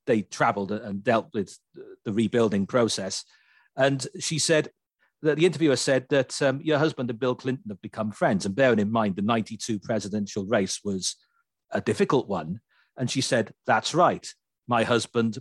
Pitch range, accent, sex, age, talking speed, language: 110-145 Hz, British, male, 40-59, 170 wpm, English